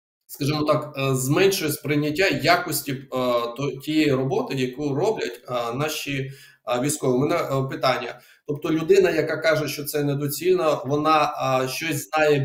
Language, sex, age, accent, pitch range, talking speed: Ukrainian, male, 20-39, native, 130-155 Hz, 115 wpm